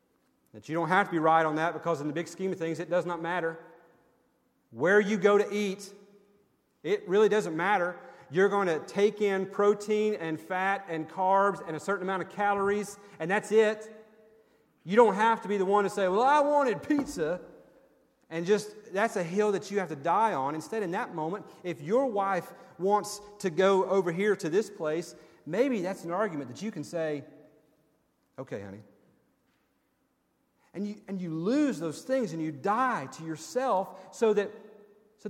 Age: 40-59